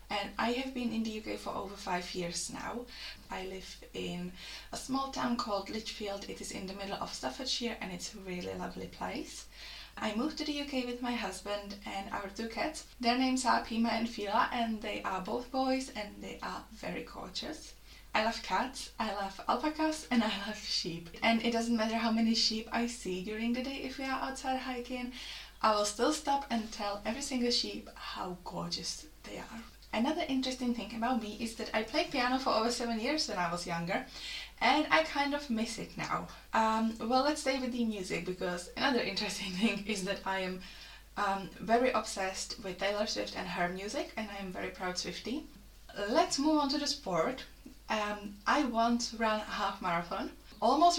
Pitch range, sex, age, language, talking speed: 200-255 Hz, female, 10-29, English, 200 wpm